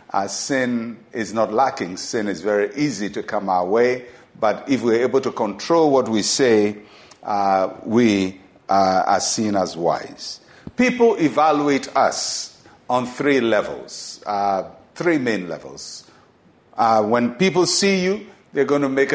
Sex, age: male, 50-69